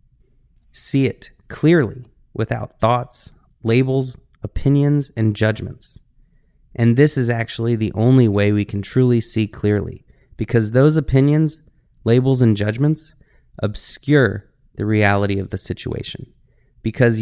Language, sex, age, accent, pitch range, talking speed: English, male, 30-49, American, 110-135 Hz, 120 wpm